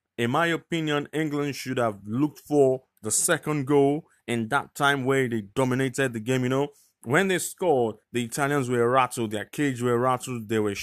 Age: 20-39